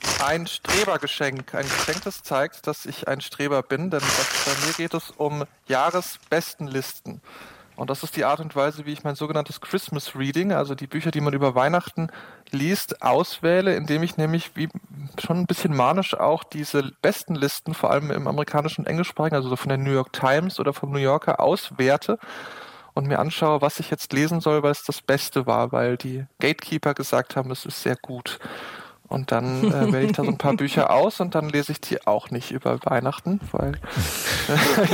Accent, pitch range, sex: German, 140-170 Hz, male